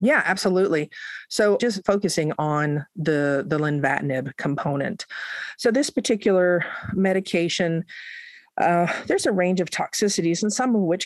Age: 40-59